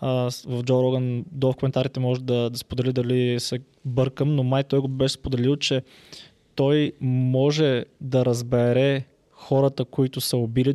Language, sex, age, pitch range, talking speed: Bulgarian, male, 20-39, 130-150 Hz, 155 wpm